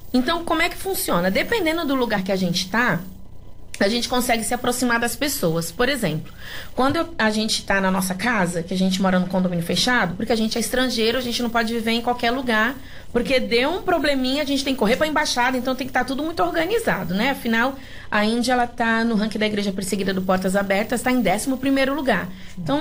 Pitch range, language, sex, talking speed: 195-260 Hz, Portuguese, female, 230 wpm